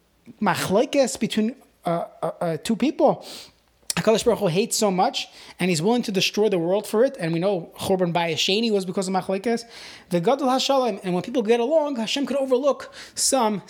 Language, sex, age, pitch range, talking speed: English, male, 20-39, 180-225 Hz, 185 wpm